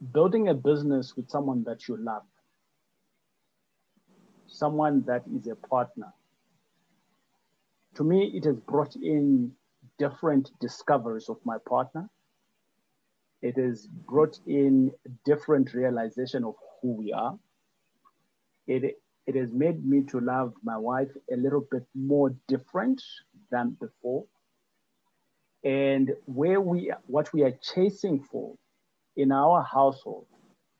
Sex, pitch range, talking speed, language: male, 125-160 Hz, 120 wpm, English